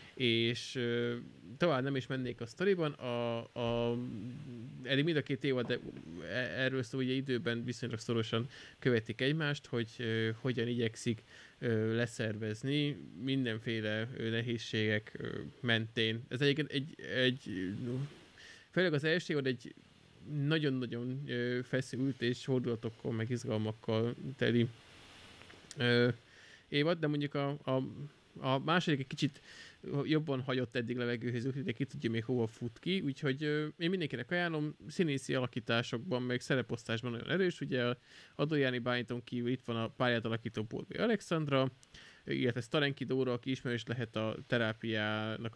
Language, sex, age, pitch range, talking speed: Hungarian, male, 20-39, 115-140 Hz, 135 wpm